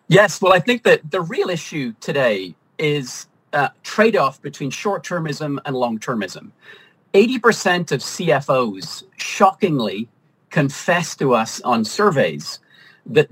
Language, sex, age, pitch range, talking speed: English, male, 40-59, 130-180 Hz, 115 wpm